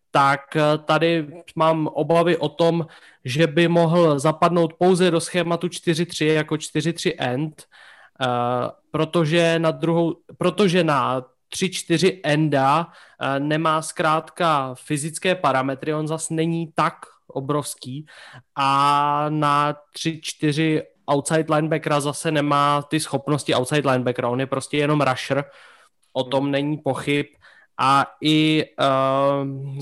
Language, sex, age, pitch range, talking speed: Slovak, male, 20-39, 145-165 Hz, 115 wpm